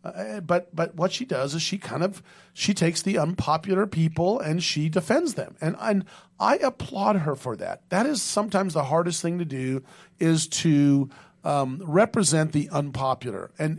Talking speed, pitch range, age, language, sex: 185 wpm, 135-170 Hz, 40-59, English, male